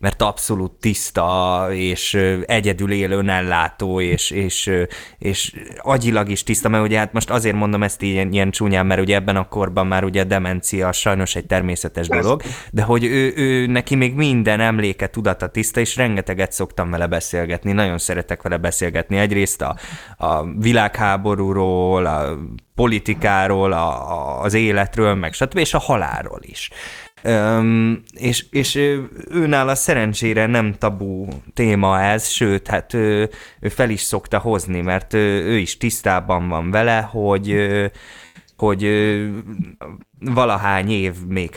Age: 20-39